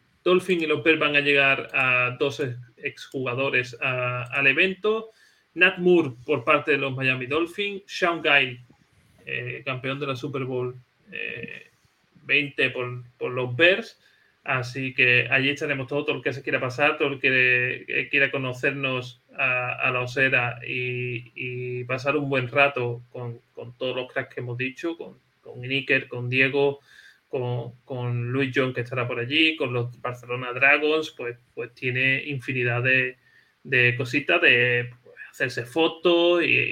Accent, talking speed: Spanish, 160 wpm